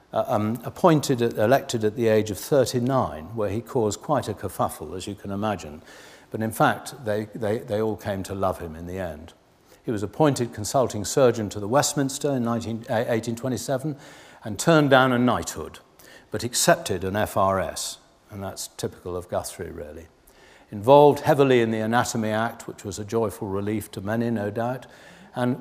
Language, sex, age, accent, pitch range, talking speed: English, male, 60-79, British, 105-135 Hz, 180 wpm